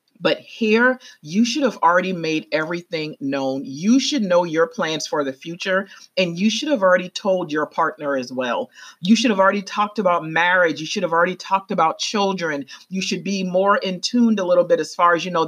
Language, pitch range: English, 165-220 Hz